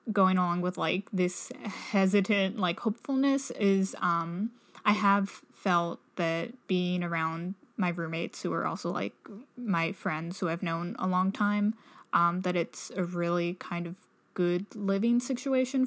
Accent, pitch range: American, 175-210 Hz